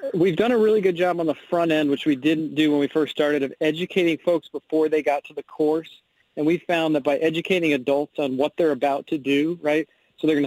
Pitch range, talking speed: 145-165 Hz, 250 wpm